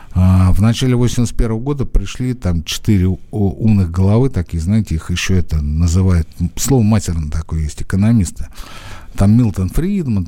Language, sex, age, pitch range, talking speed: Russian, male, 60-79, 95-135 Hz, 135 wpm